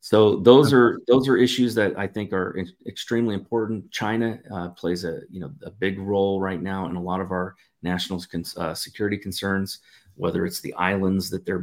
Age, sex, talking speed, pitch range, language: 30-49, male, 200 wpm, 90-110 Hz, English